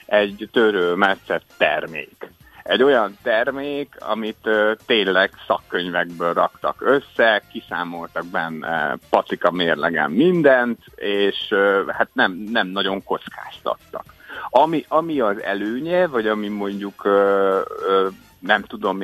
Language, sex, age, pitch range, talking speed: Hungarian, male, 50-69, 95-125 Hz, 115 wpm